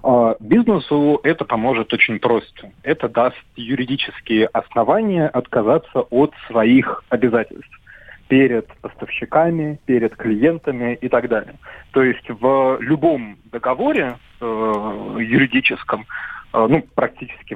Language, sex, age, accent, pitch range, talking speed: Russian, male, 30-49, native, 110-140 Hz, 105 wpm